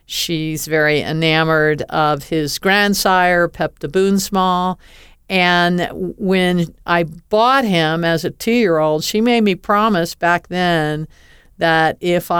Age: 50-69